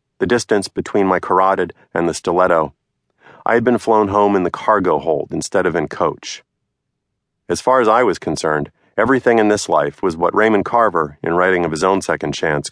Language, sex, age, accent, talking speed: English, male, 40-59, American, 200 wpm